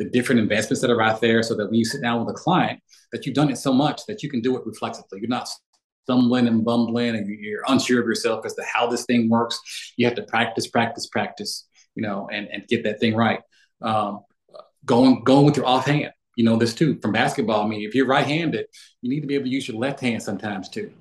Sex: male